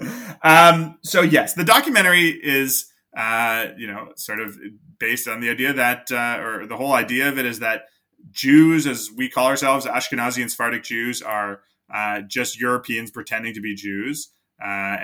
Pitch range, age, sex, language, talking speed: 100-135 Hz, 20-39, male, English, 170 wpm